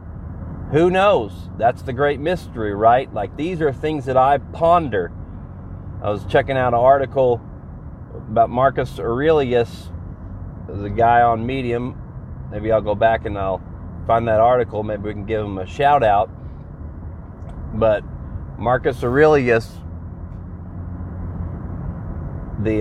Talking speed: 125 wpm